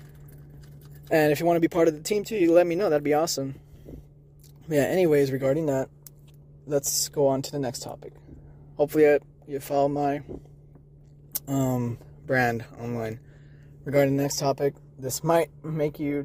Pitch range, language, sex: 135-145 Hz, English, male